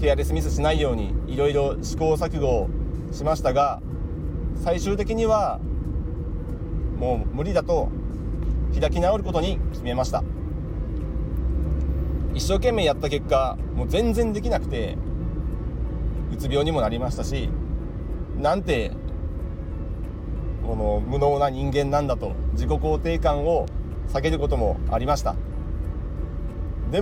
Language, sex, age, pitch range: Japanese, male, 40-59, 75-125 Hz